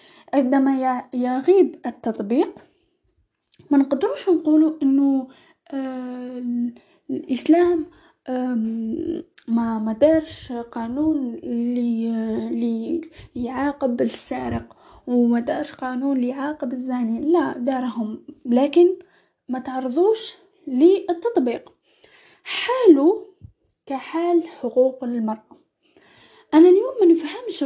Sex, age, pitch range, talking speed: female, 10-29, 255-335 Hz, 70 wpm